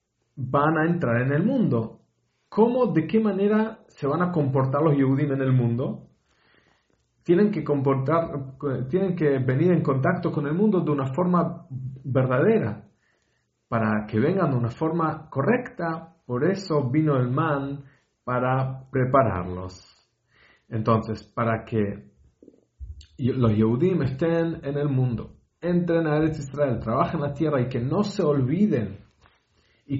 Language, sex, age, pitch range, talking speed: English, male, 40-59, 115-170 Hz, 140 wpm